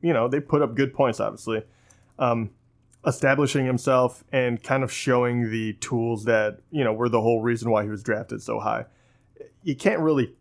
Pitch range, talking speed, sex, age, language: 115-135 Hz, 190 wpm, male, 20-39, English